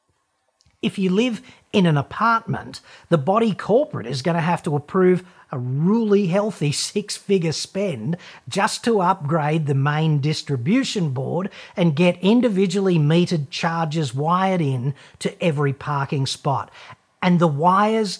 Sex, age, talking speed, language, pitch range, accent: male, 40-59, 135 wpm, English, 150-205 Hz, Australian